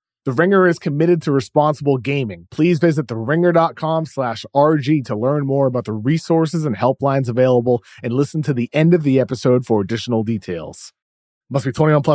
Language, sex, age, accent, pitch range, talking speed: English, male, 30-49, American, 125-175 Hz, 180 wpm